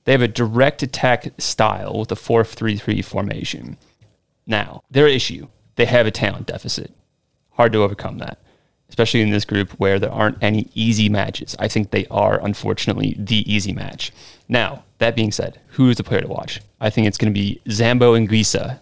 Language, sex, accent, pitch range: English, male, American, 100-120 Hz